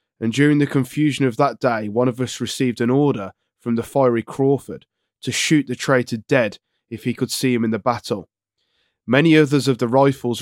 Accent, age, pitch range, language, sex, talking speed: British, 20-39, 115-135 Hz, English, male, 200 wpm